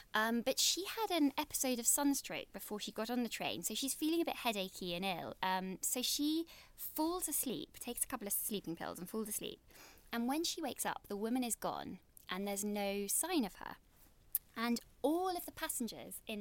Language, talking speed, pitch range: English, 210 wpm, 195-260 Hz